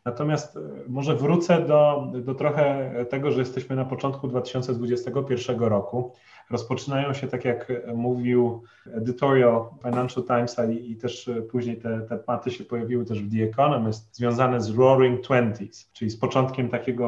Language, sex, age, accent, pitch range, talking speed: Polish, male, 30-49, native, 120-135 Hz, 145 wpm